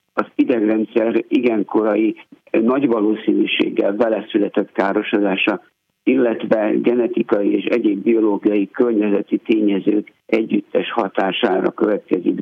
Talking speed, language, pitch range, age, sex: 85 wpm, Hungarian, 105-125 Hz, 60-79, male